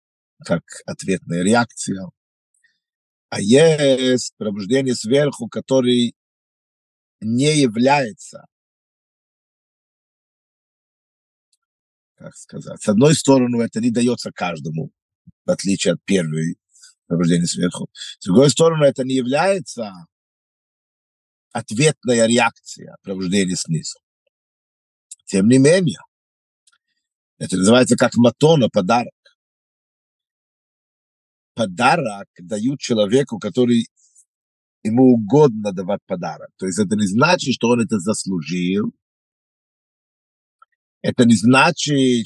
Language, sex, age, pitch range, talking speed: Russian, male, 50-69, 110-165 Hz, 90 wpm